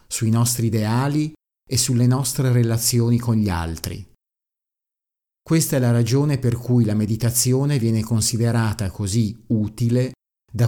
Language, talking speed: Italian, 130 wpm